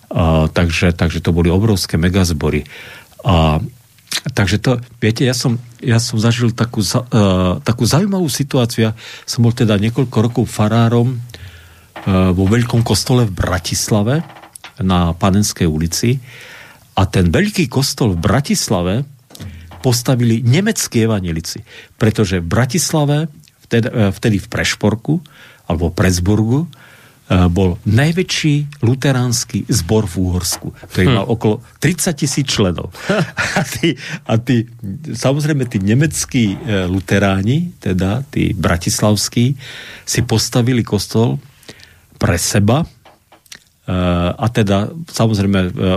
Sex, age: male, 50-69